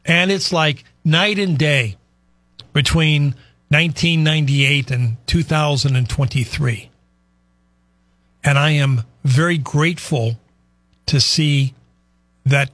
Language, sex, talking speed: English, male, 85 wpm